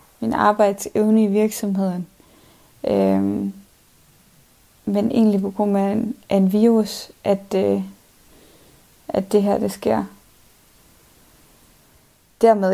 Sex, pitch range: female, 190-210 Hz